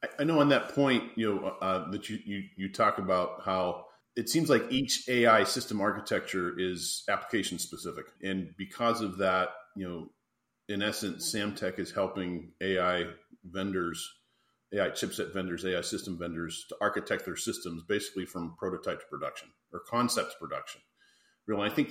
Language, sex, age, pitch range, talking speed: English, male, 40-59, 95-110 Hz, 165 wpm